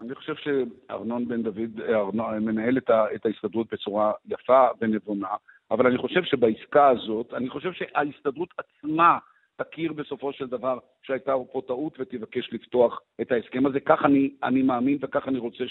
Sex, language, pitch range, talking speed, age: male, English, 125-145 Hz, 155 wpm, 50-69